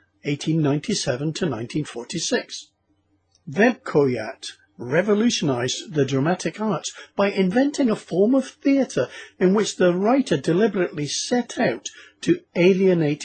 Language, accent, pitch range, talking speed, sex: English, British, 125-205 Hz, 110 wpm, male